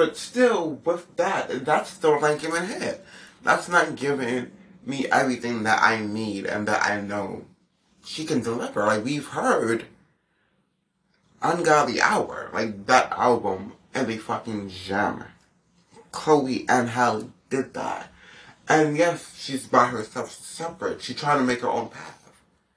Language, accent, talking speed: English, American, 145 wpm